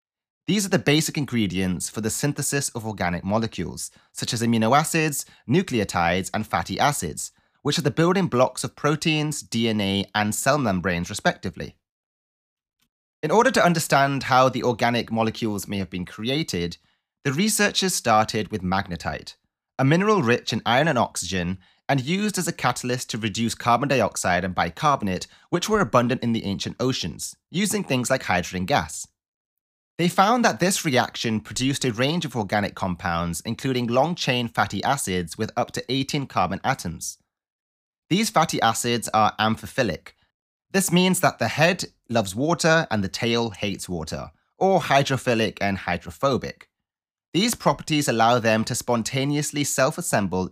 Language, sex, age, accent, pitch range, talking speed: English, male, 30-49, British, 100-145 Hz, 150 wpm